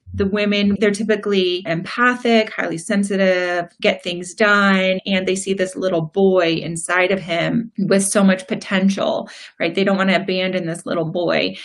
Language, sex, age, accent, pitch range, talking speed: English, female, 30-49, American, 175-210 Hz, 165 wpm